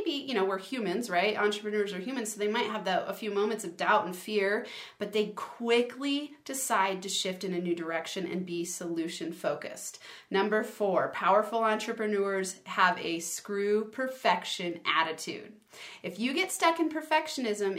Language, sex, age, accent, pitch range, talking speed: English, female, 30-49, American, 190-240 Hz, 170 wpm